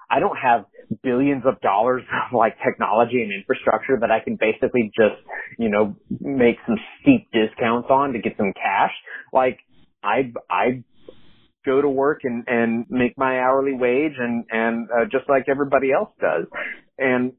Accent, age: American, 30-49